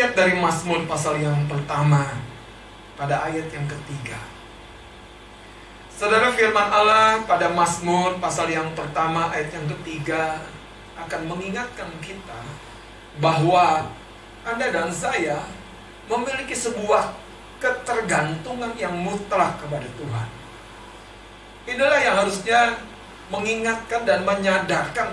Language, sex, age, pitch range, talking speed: Indonesian, male, 30-49, 145-215 Hz, 95 wpm